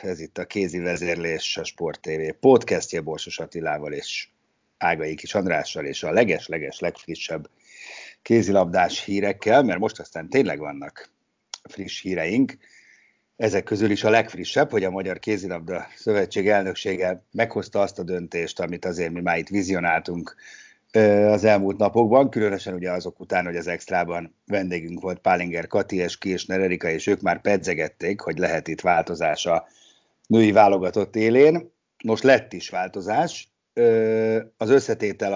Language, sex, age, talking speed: Hungarian, male, 50-69, 140 wpm